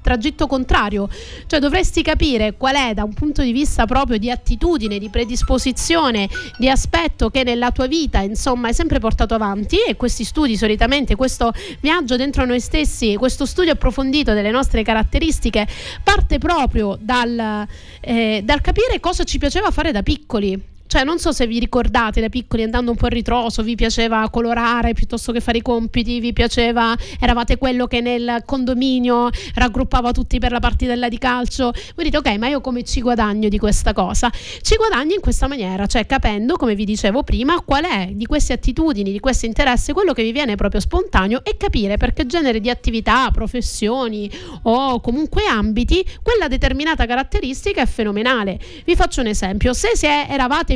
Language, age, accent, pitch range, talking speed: Italian, 30-49, native, 230-285 Hz, 175 wpm